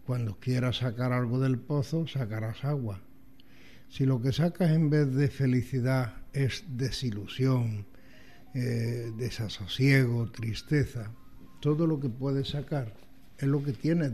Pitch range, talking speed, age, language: 120-150 Hz, 125 wpm, 60-79, Spanish